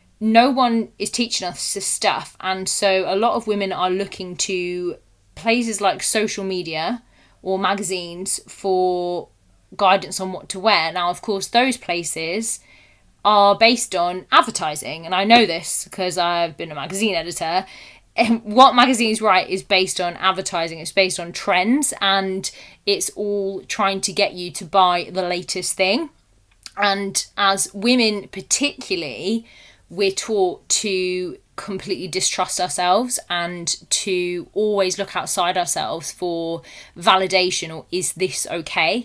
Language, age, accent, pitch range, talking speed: English, 20-39, British, 180-210 Hz, 140 wpm